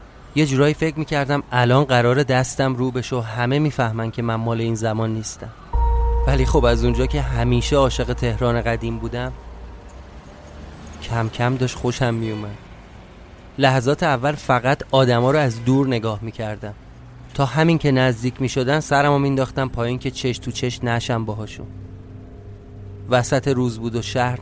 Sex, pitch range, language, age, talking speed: male, 100-135 Hz, Persian, 30-49, 155 wpm